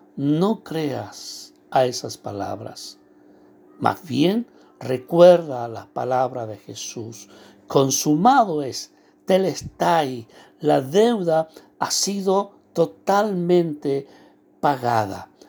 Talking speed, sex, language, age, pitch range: 80 wpm, male, Spanish, 60-79, 140-195 Hz